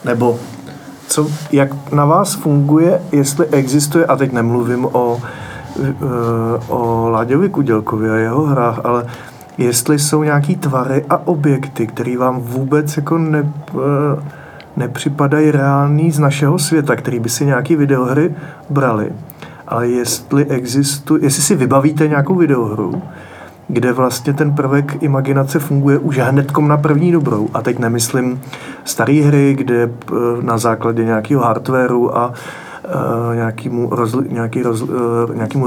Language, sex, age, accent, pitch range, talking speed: Czech, male, 40-59, native, 120-145 Hz, 120 wpm